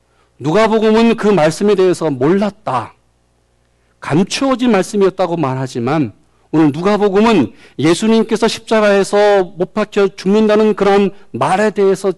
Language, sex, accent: Korean, male, native